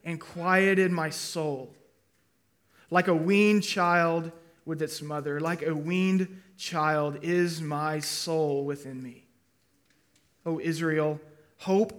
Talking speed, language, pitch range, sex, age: 115 wpm, English, 155-180 Hz, male, 20-39